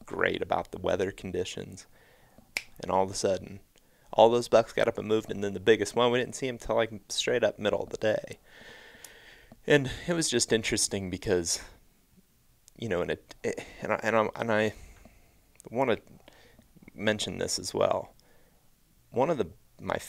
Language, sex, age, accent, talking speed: English, male, 30-49, American, 180 wpm